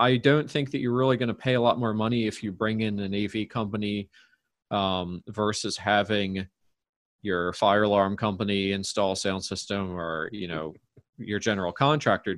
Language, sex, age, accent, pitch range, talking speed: English, male, 30-49, American, 100-120 Hz, 175 wpm